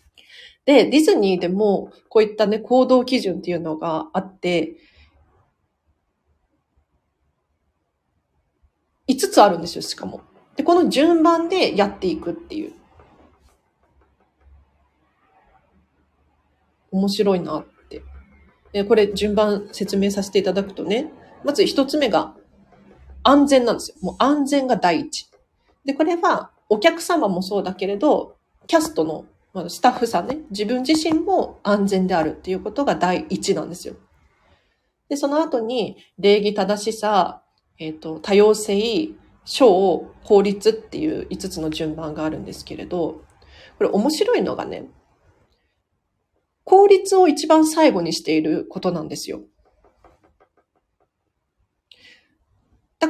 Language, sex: Japanese, female